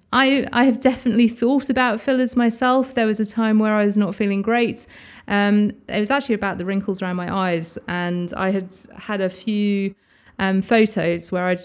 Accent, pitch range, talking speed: British, 185-245 Hz, 190 wpm